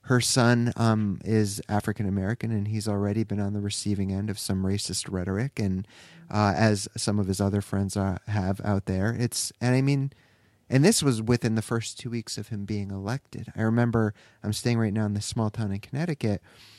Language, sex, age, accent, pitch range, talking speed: English, male, 30-49, American, 100-120 Hz, 200 wpm